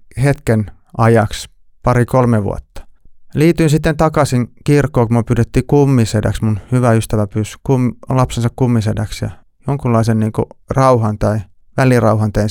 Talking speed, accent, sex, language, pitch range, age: 125 wpm, native, male, Finnish, 110-135 Hz, 30-49